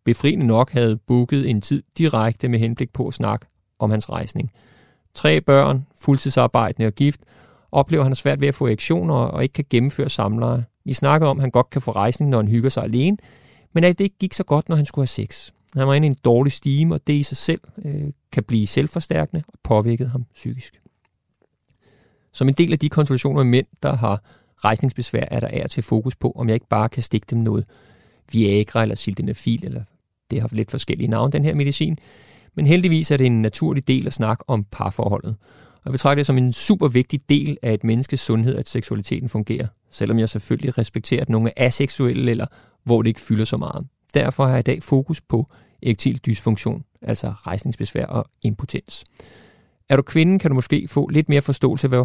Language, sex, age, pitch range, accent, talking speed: Danish, male, 30-49, 115-145 Hz, native, 205 wpm